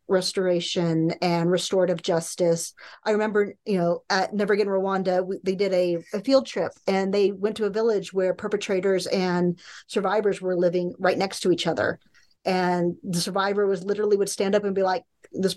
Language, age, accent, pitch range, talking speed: English, 40-59, American, 180-215 Hz, 185 wpm